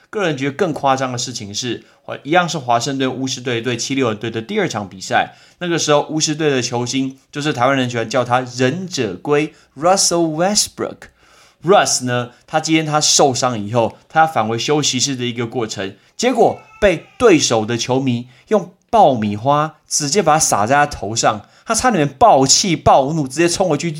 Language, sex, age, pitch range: Chinese, male, 20-39, 120-155 Hz